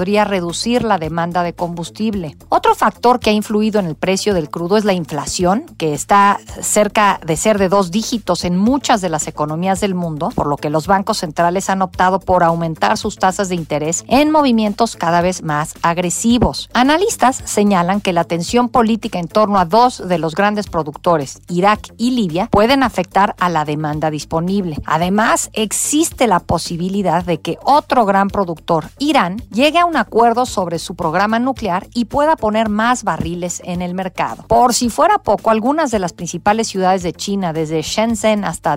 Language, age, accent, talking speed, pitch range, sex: Spanish, 50-69, Mexican, 180 wpm, 175-230 Hz, female